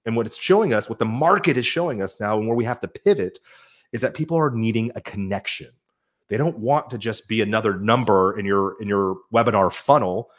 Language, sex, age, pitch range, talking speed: English, male, 30-49, 105-145 Hz, 225 wpm